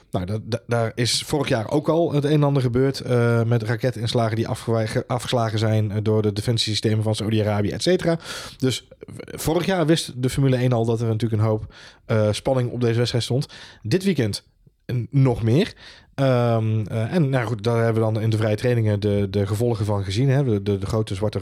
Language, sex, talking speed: Dutch, male, 205 wpm